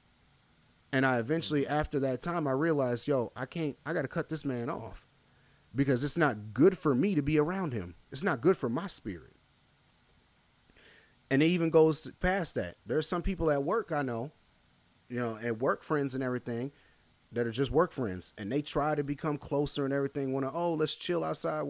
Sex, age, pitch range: male, 30-49, 115-150 Hz